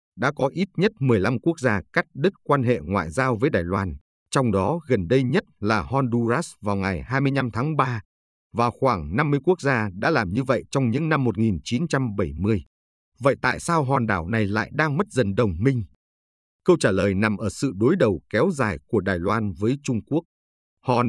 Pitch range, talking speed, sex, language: 95-140 Hz, 200 wpm, male, Vietnamese